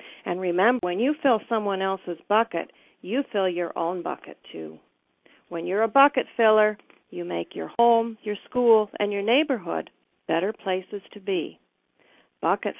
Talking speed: 155 wpm